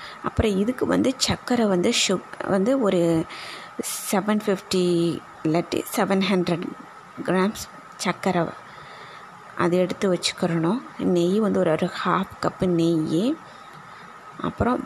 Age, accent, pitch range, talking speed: 20-39, native, 180-215 Hz, 105 wpm